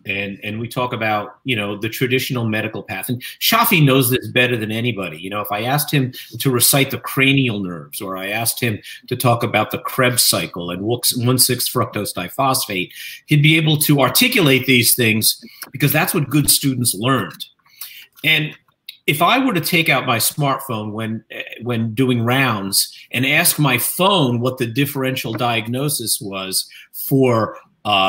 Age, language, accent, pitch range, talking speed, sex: 40-59, English, American, 115-155 Hz, 170 wpm, male